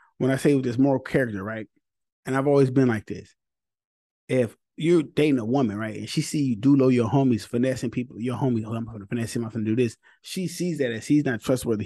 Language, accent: English, American